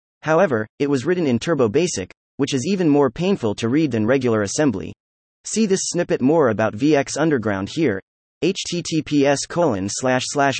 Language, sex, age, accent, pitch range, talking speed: English, male, 30-49, American, 110-160 Hz, 145 wpm